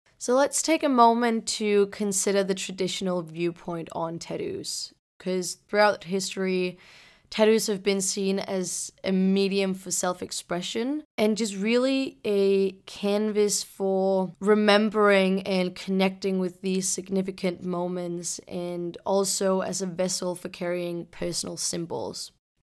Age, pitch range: 20-39, 180-205 Hz